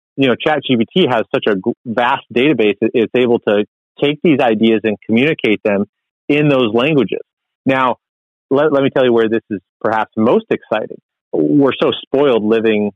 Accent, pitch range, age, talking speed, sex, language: American, 105-135 Hz, 30-49, 170 wpm, male, English